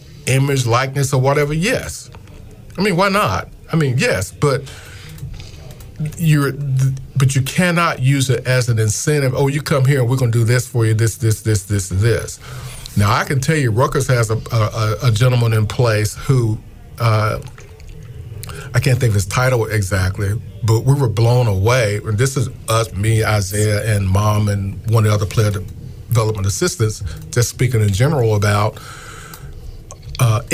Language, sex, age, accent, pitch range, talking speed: English, male, 40-59, American, 105-130 Hz, 170 wpm